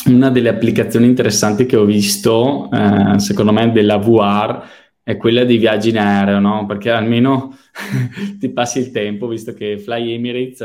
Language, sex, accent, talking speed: Italian, male, native, 165 wpm